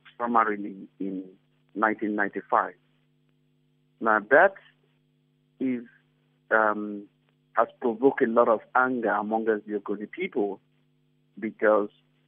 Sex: male